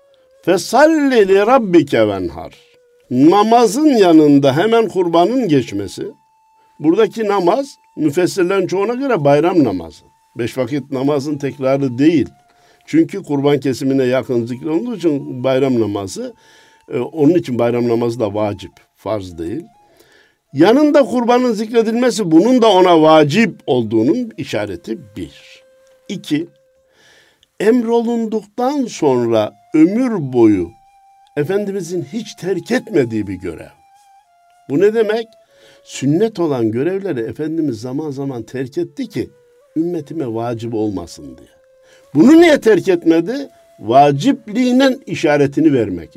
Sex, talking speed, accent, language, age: male, 100 wpm, native, Turkish, 60-79